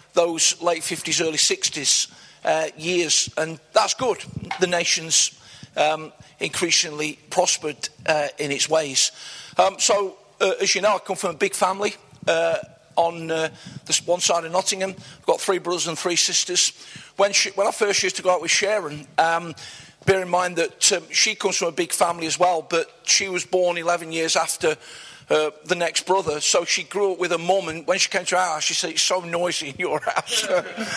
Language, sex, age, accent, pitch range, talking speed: English, male, 50-69, British, 155-185 Hz, 200 wpm